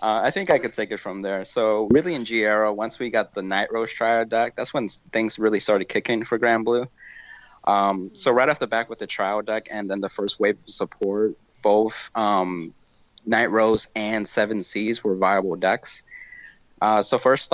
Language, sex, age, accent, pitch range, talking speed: English, male, 20-39, American, 100-115 Hz, 205 wpm